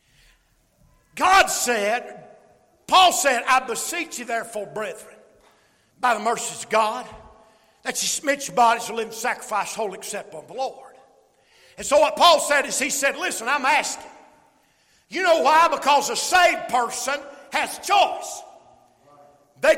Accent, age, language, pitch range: American, 50-69, English, 250-320 Hz